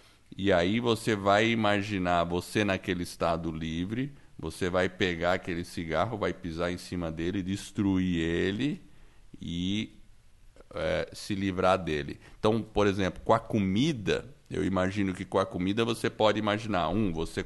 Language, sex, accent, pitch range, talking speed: Portuguese, male, Brazilian, 85-105 Hz, 145 wpm